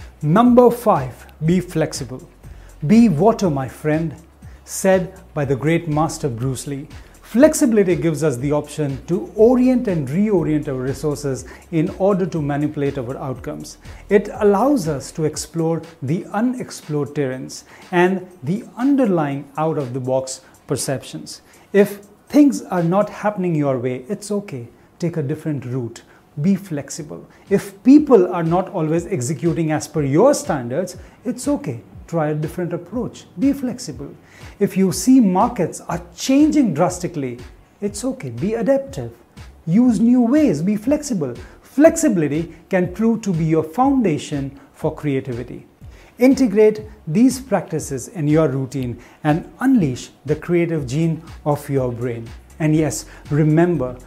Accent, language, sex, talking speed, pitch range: Indian, English, male, 135 wpm, 145-205 Hz